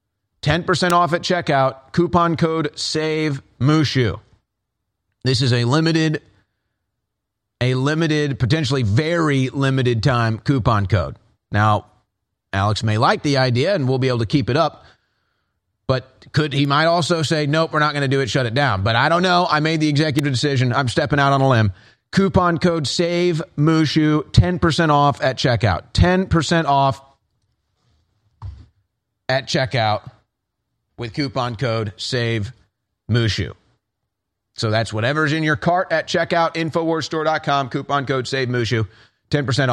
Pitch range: 110-155 Hz